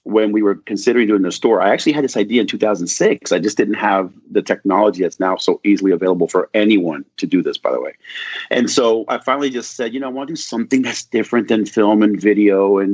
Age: 30-49